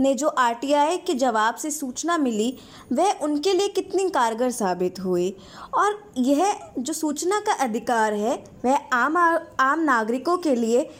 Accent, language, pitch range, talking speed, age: Indian, English, 245-330 Hz, 160 wpm, 20-39